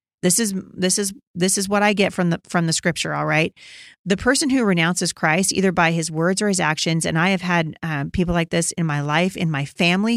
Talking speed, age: 250 wpm, 40-59